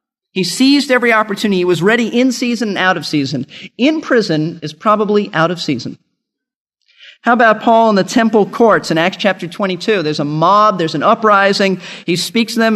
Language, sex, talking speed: English, male, 195 wpm